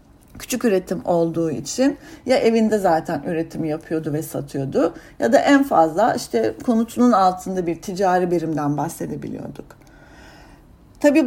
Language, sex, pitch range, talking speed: English, female, 165-255 Hz, 120 wpm